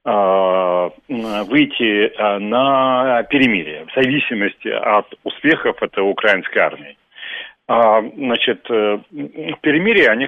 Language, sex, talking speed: Russian, male, 75 wpm